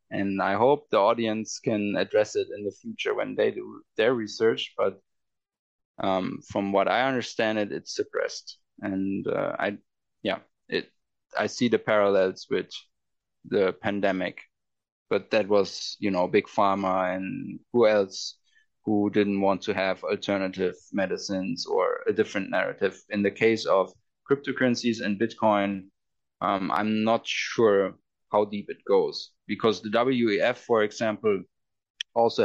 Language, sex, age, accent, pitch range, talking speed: English, male, 20-39, German, 100-140 Hz, 145 wpm